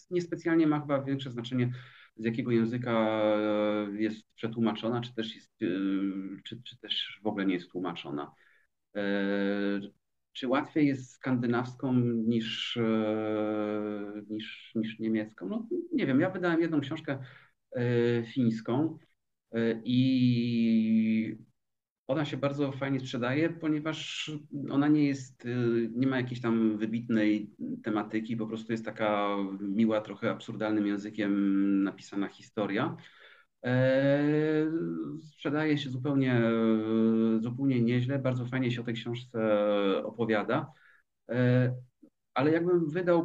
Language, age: Polish, 40-59